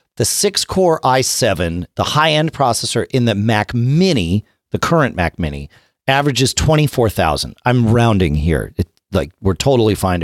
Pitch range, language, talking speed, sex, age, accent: 90-130 Hz, English, 145 wpm, male, 40-59, American